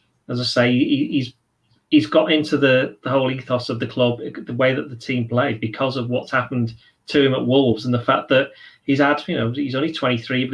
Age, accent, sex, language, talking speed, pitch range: 30-49, British, male, English, 235 wpm, 125-150 Hz